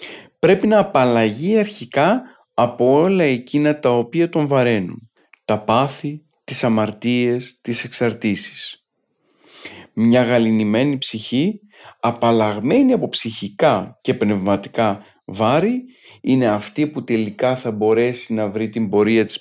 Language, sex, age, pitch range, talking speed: Greek, male, 40-59, 115-145 Hz, 115 wpm